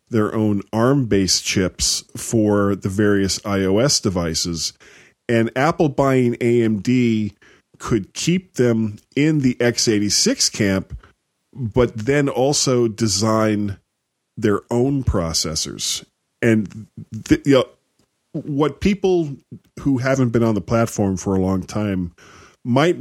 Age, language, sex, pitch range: 40-59, English, male, 100-130 Hz